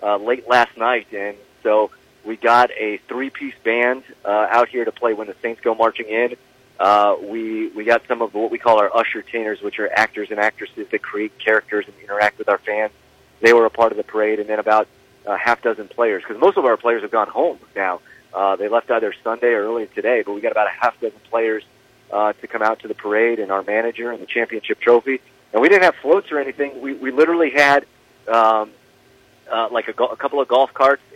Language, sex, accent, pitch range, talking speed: English, male, American, 105-135 Hz, 235 wpm